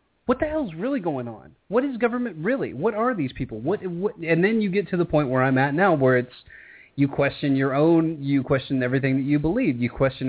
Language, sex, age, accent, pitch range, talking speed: English, male, 30-49, American, 125-155 Hz, 245 wpm